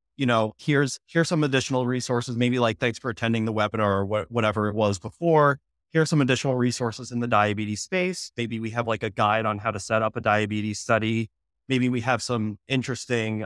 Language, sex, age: English, male, 20-39